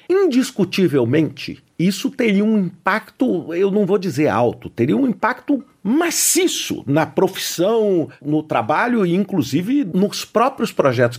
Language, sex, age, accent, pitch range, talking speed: Portuguese, male, 50-69, Brazilian, 140-205 Hz, 125 wpm